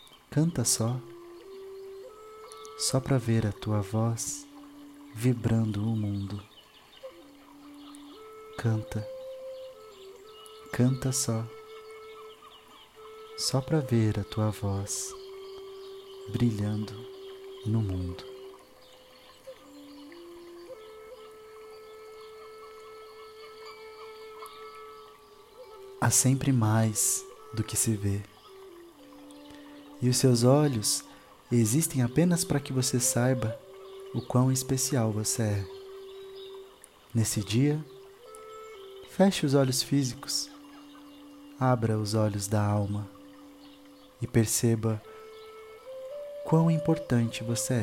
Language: Portuguese